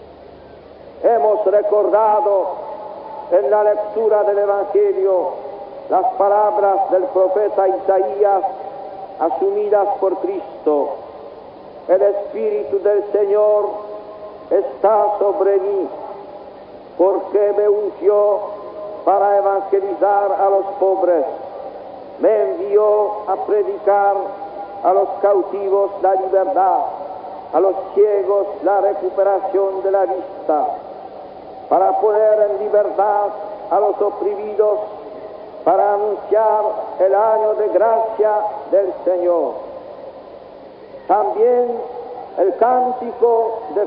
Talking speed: 90 wpm